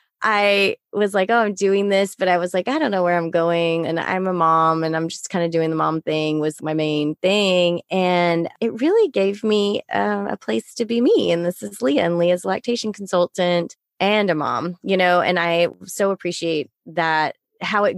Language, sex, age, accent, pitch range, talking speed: English, female, 20-39, American, 160-195 Hz, 215 wpm